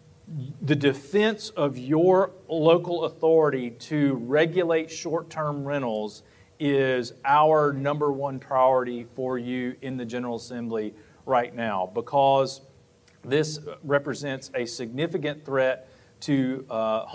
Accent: American